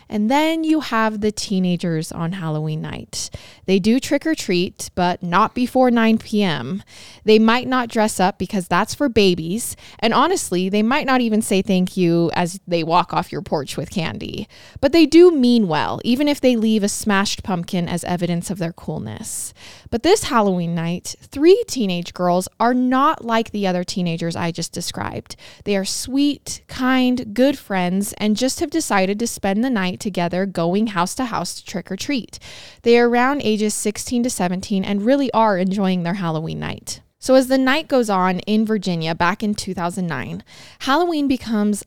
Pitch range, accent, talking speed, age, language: 180-240 Hz, American, 185 wpm, 20-39, English